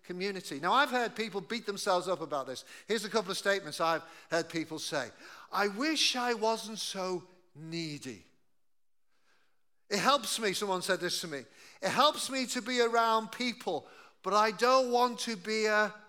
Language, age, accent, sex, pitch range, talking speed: English, 50-69, British, male, 175-225 Hz, 175 wpm